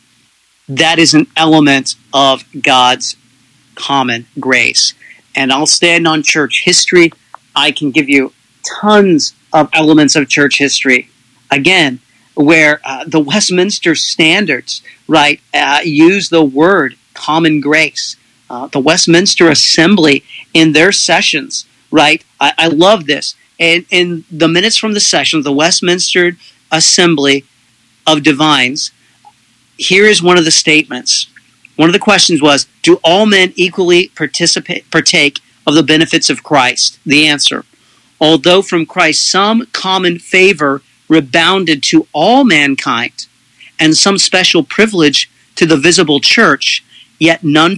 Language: English